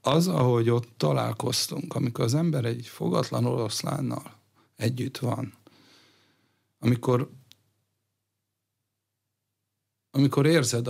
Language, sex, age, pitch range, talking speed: Hungarian, male, 60-79, 105-125 Hz, 85 wpm